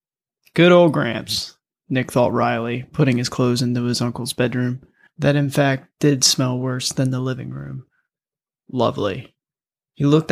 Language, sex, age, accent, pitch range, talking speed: English, male, 20-39, American, 120-140 Hz, 150 wpm